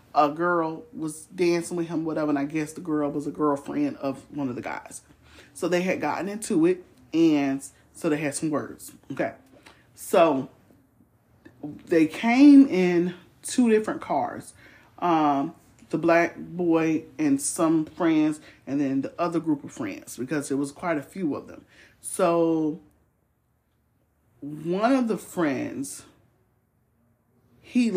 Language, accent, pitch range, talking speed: English, American, 145-210 Hz, 145 wpm